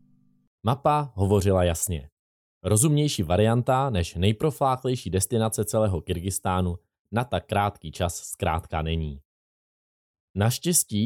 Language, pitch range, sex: Czech, 90-125 Hz, male